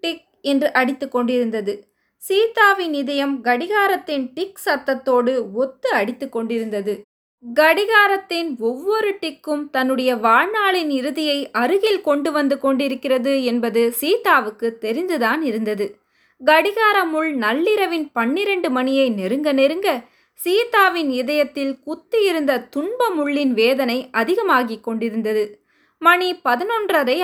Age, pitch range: 20-39, 245-345 Hz